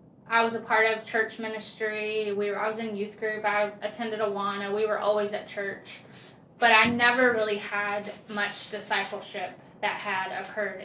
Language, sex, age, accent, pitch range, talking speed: English, female, 10-29, American, 205-230 Hz, 185 wpm